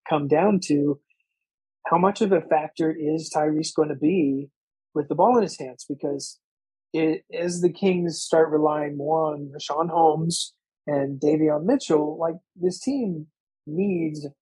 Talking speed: 155 wpm